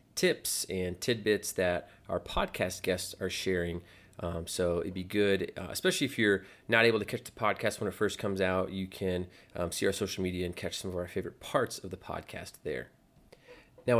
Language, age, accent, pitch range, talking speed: English, 30-49, American, 90-105 Hz, 205 wpm